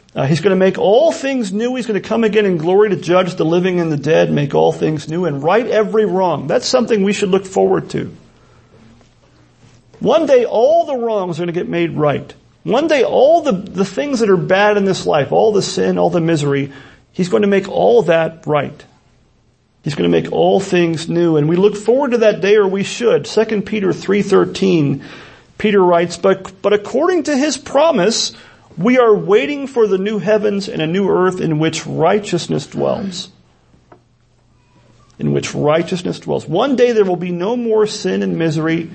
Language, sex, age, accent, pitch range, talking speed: English, male, 40-59, American, 155-205 Hz, 200 wpm